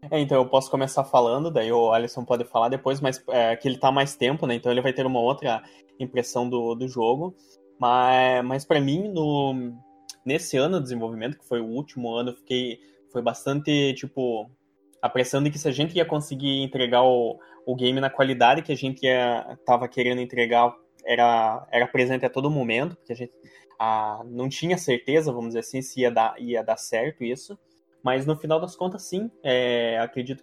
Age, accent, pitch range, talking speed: 20-39, Brazilian, 120-145 Hz, 195 wpm